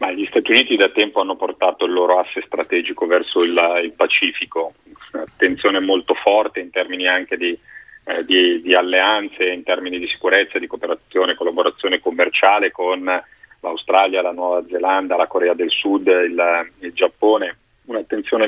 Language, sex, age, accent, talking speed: Italian, male, 30-49, native, 155 wpm